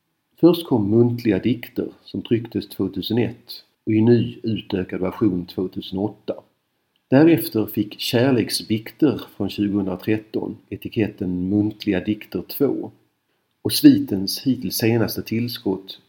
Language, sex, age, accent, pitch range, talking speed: Swedish, male, 50-69, native, 95-115 Hz, 100 wpm